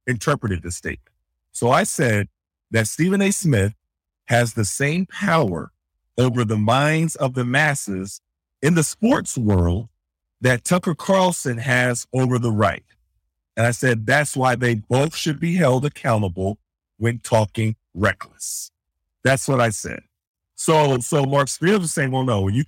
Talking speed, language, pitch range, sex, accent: 155 wpm, English, 115-165 Hz, male, American